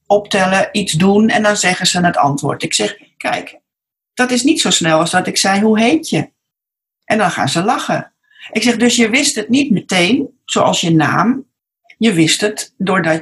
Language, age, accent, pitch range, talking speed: Dutch, 40-59, Dutch, 180-240 Hz, 200 wpm